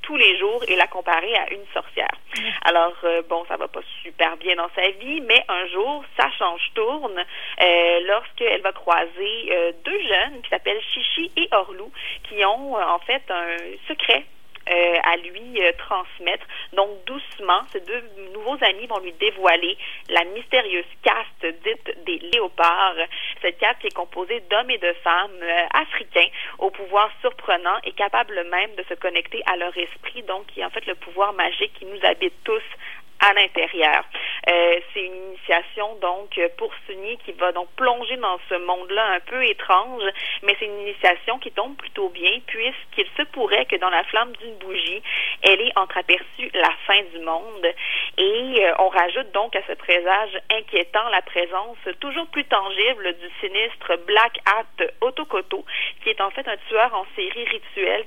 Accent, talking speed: Canadian, 175 wpm